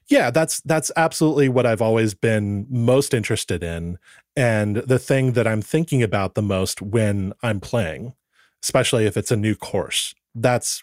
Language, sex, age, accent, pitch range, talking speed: English, male, 30-49, American, 105-135 Hz, 165 wpm